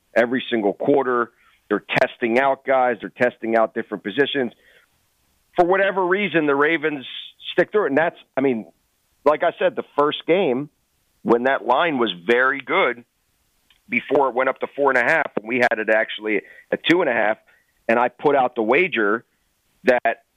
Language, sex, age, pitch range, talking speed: English, male, 40-59, 115-145 Hz, 185 wpm